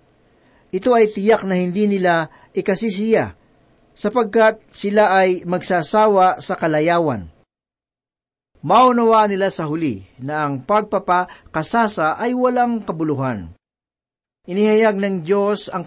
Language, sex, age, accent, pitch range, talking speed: Filipino, male, 40-59, native, 155-200 Hz, 100 wpm